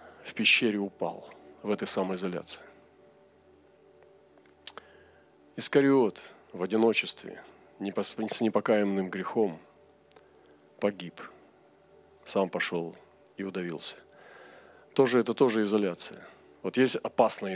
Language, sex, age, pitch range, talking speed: Russian, male, 40-59, 100-140 Hz, 85 wpm